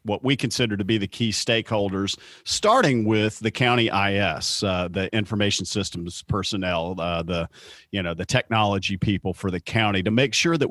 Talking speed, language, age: 180 wpm, English, 40-59